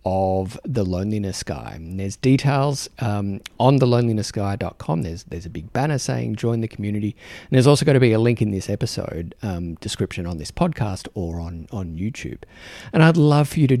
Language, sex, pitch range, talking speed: English, male, 100-120 Hz, 195 wpm